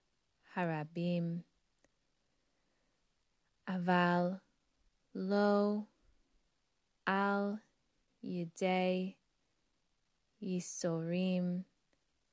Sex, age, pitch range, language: female, 20-39, 165-190 Hz, English